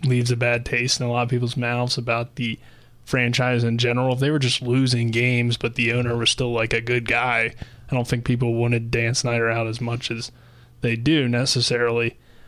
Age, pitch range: 20-39, 120-130 Hz